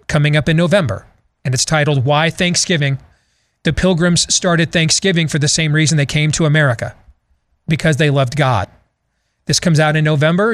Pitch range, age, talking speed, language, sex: 145-180 Hz, 40-59, 170 wpm, English, male